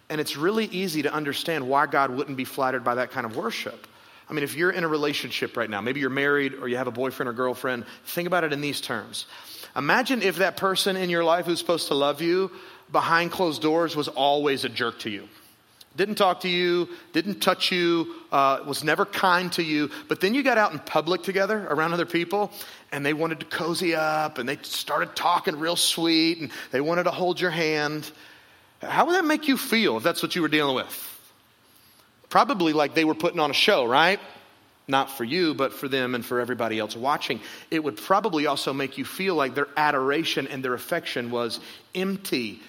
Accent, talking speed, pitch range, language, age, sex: American, 215 wpm, 140-180 Hz, English, 30-49, male